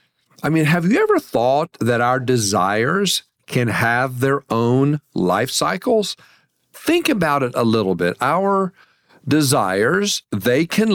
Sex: male